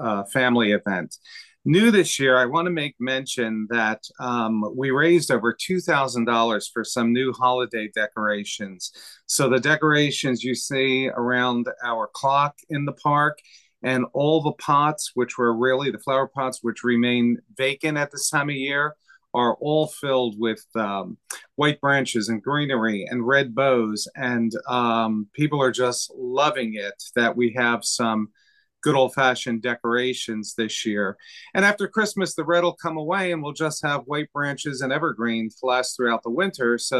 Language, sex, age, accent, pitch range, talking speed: English, male, 40-59, American, 115-145 Hz, 165 wpm